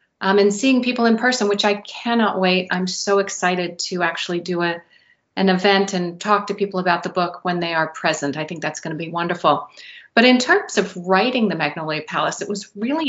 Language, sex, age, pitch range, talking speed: English, female, 40-59, 175-205 Hz, 210 wpm